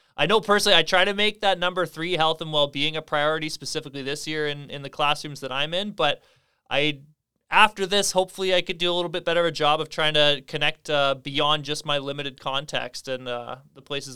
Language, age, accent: English, 20-39, American